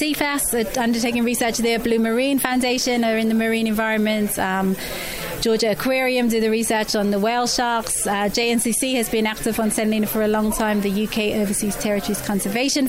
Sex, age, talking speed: female, 30-49, 180 wpm